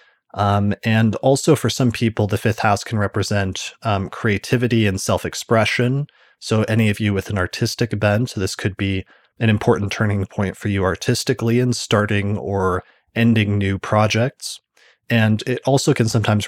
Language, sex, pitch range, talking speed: English, male, 100-115 Hz, 165 wpm